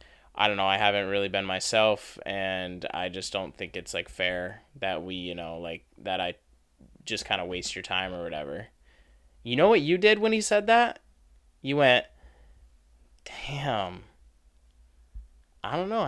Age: 20-39